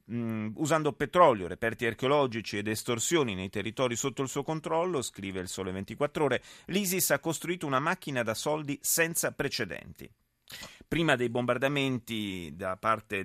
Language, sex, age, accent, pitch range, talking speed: Italian, male, 30-49, native, 110-145 Hz, 140 wpm